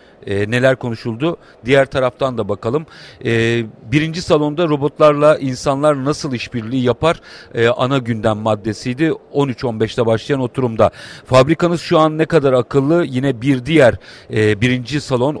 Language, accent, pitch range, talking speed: Turkish, native, 120-145 Hz, 135 wpm